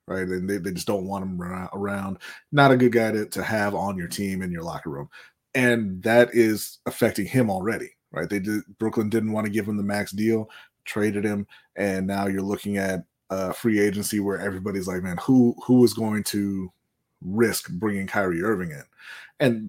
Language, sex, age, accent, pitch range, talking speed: English, male, 30-49, American, 95-115 Hz, 200 wpm